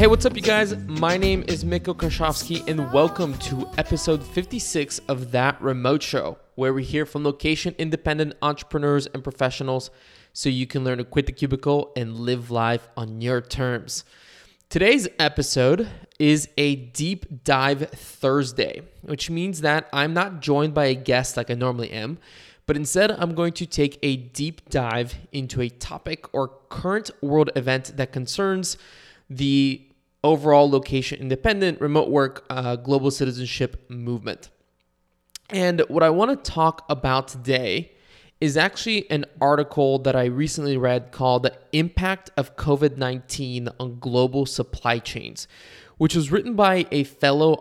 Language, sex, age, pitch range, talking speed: English, male, 20-39, 130-155 Hz, 150 wpm